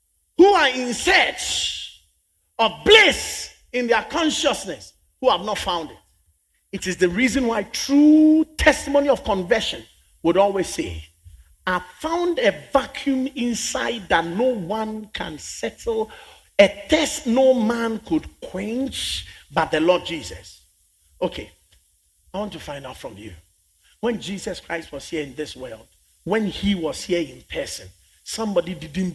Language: English